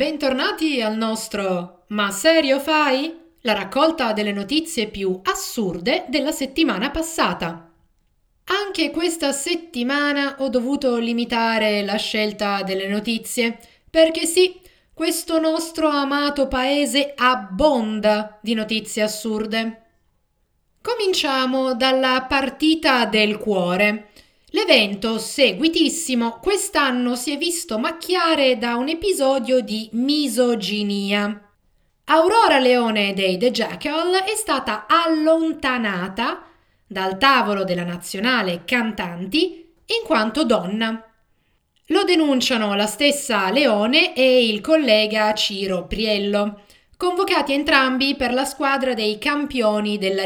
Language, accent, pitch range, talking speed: Italian, native, 215-305 Hz, 105 wpm